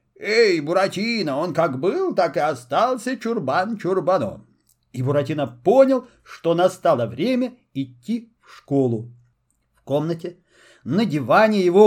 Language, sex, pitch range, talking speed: Russian, male, 150-215 Hz, 115 wpm